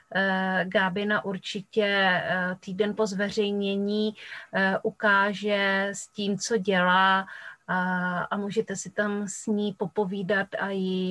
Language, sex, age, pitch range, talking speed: Czech, female, 30-49, 195-215 Hz, 110 wpm